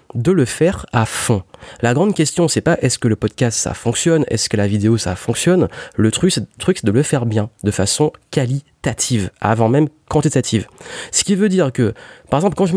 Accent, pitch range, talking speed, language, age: French, 110-150 Hz, 210 wpm, French, 30-49